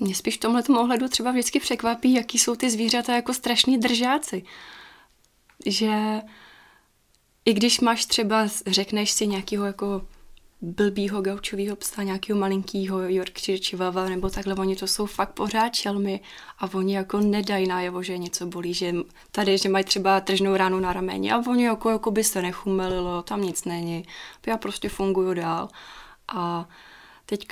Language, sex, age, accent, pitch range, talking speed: Czech, female, 20-39, native, 190-210 Hz, 160 wpm